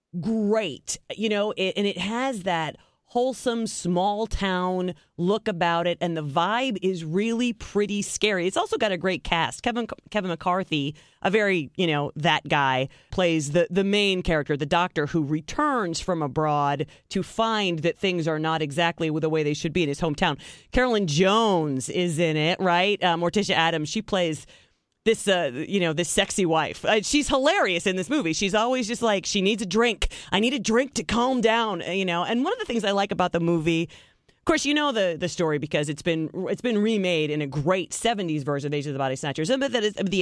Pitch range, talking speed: 160-215 Hz, 205 wpm